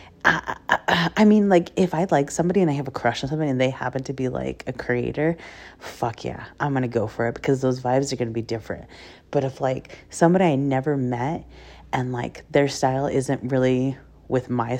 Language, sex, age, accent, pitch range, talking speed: English, female, 30-49, American, 115-155 Hz, 215 wpm